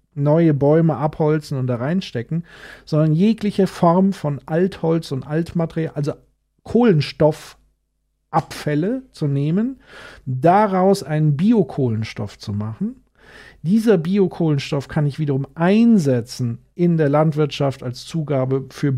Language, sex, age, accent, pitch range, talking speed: German, male, 50-69, German, 145-195 Hz, 110 wpm